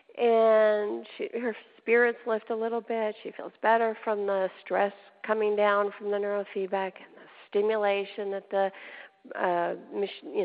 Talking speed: 150 wpm